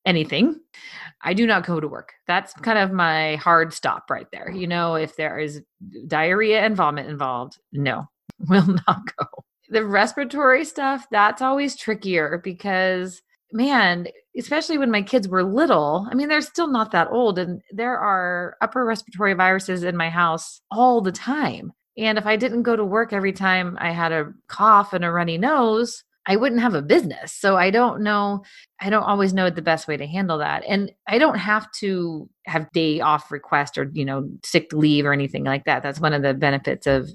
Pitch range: 155-210 Hz